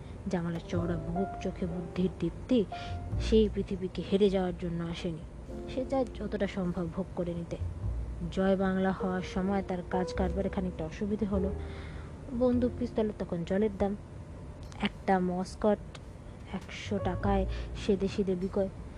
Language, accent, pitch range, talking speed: Bengali, native, 165-215 Hz, 130 wpm